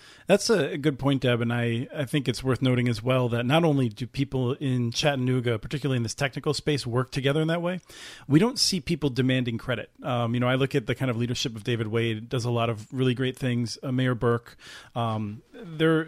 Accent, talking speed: American, 230 wpm